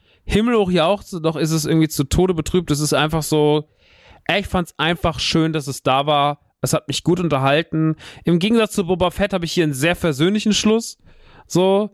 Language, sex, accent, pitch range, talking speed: German, male, German, 145-175 Hz, 215 wpm